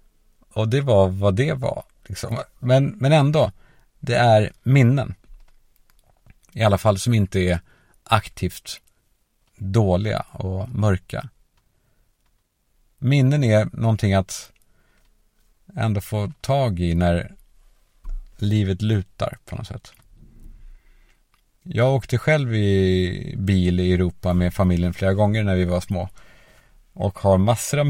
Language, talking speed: Swedish, 120 wpm